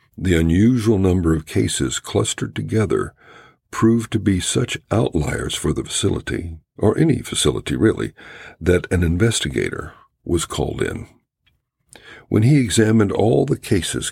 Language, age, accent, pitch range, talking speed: English, 60-79, American, 80-100 Hz, 130 wpm